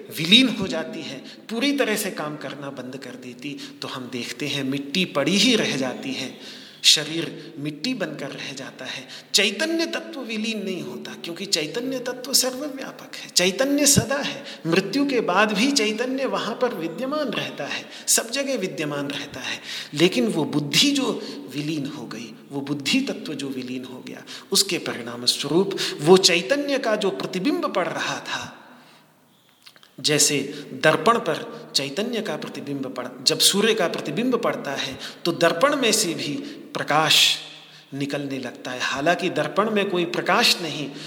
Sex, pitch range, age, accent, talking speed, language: male, 140-215 Hz, 40-59, native, 160 wpm, Hindi